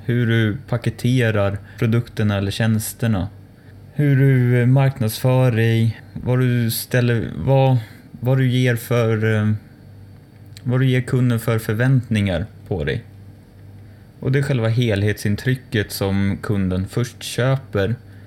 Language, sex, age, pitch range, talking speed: Swedish, male, 20-39, 105-125 Hz, 115 wpm